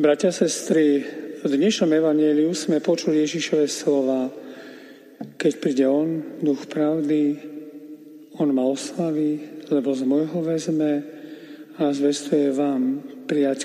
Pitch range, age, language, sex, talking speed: 145-165 Hz, 40-59, Slovak, male, 110 wpm